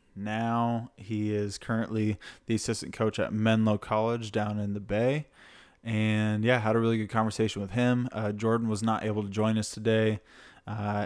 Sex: male